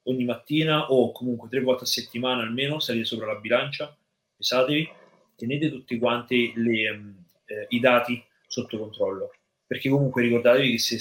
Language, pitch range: Italian, 115-140 Hz